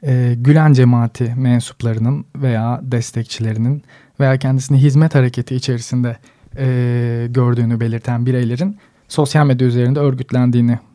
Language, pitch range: Turkish, 120-140 Hz